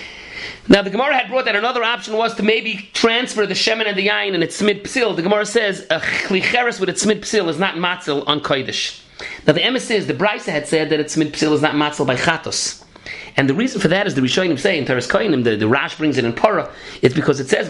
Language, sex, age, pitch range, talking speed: English, male, 30-49, 145-200 Hz, 240 wpm